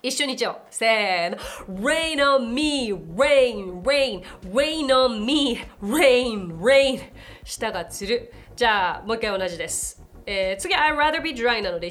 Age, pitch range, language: 30-49, 195-300 Hz, Japanese